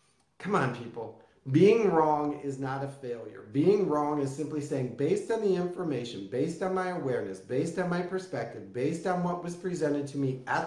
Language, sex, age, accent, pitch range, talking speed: English, male, 40-59, American, 135-185 Hz, 190 wpm